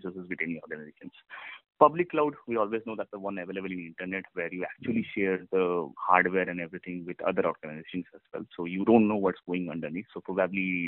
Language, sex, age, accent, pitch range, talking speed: English, male, 30-49, Indian, 90-105 Hz, 205 wpm